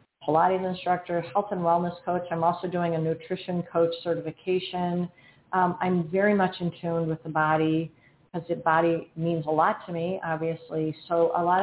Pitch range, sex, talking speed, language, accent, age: 170-195 Hz, female, 175 wpm, English, American, 40-59